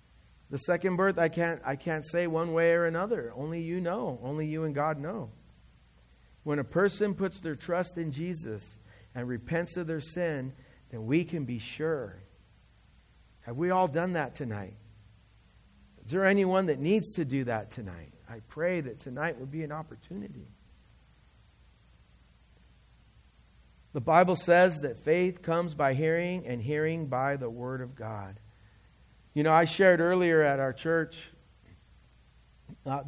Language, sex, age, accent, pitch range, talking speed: English, male, 50-69, American, 120-160 Hz, 155 wpm